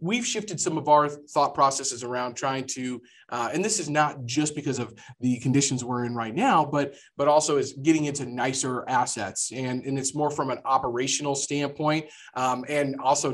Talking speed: 195 wpm